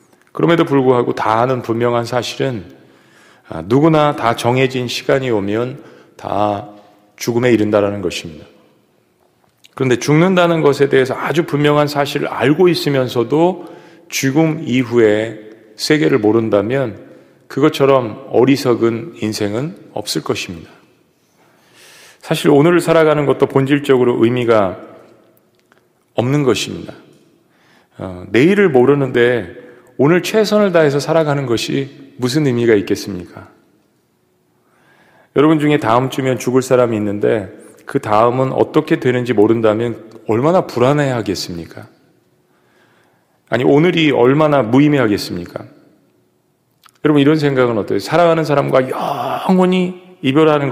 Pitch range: 115-150 Hz